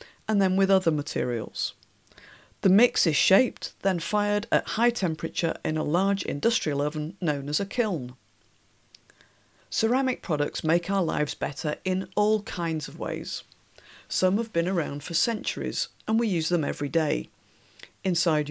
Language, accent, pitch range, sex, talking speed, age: English, British, 155-200 Hz, female, 150 wpm, 50-69